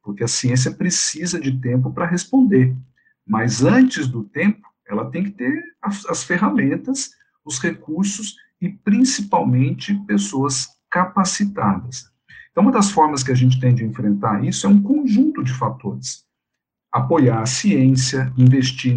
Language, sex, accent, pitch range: Portuguese, male, Brazilian, 120-165 Hz